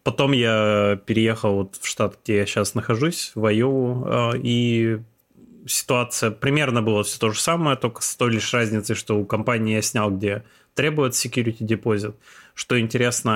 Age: 20-39